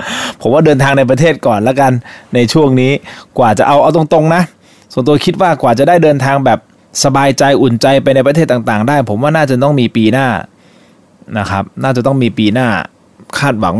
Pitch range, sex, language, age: 105-135 Hz, male, Thai, 20-39